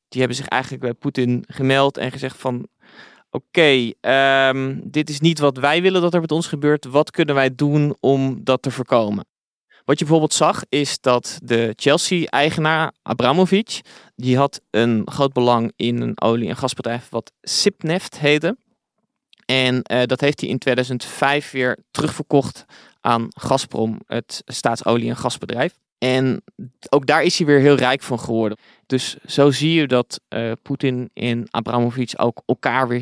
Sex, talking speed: male, 160 wpm